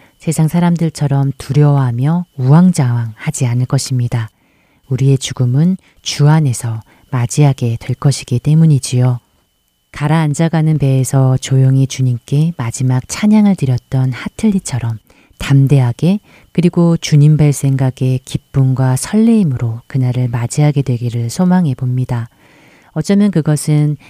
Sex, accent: female, native